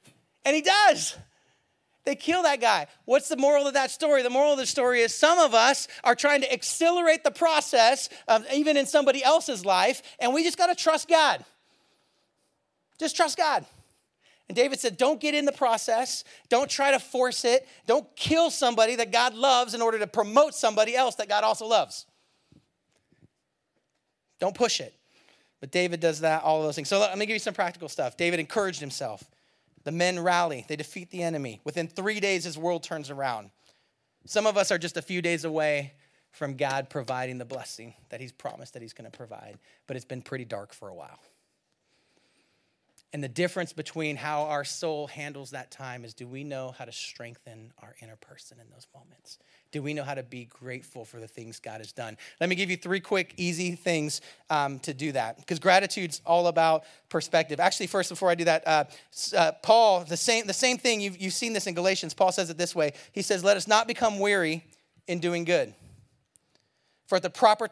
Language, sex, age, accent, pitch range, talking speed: English, male, 40-59, American, 150-240 Hz, 205 wpm